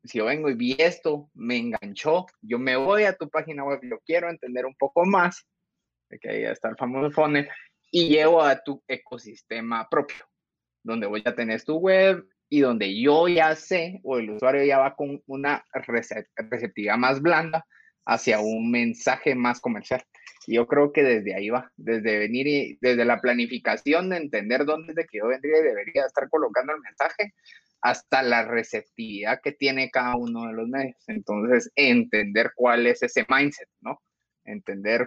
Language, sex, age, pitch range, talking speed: Spanish, male, 30-49, 115-165 Hz, 185 wpm